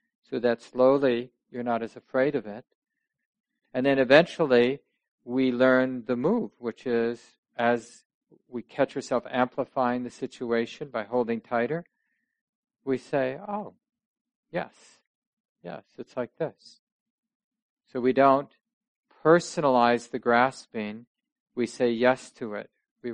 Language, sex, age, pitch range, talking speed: English, male, 50-69, 125-165 Hz, 125 wpm